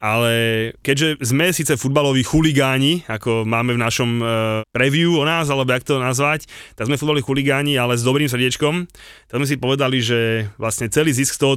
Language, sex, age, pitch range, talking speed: Slovak, male, 30-49, 115-135 Hz, 185 wpm